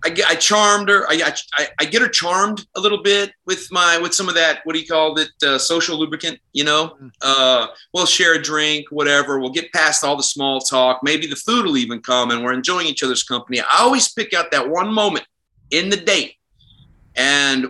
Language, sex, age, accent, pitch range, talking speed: English, male, 30-49, American, 135-190 Hz, 220 wpm